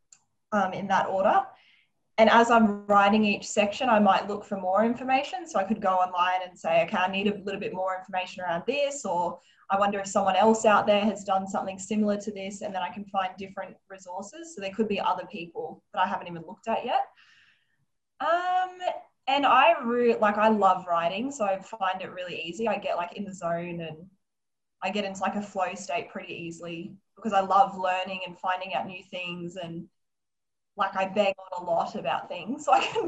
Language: English